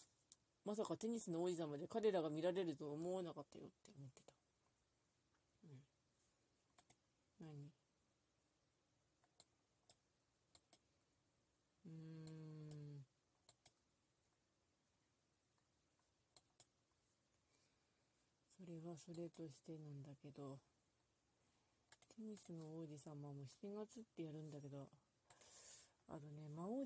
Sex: female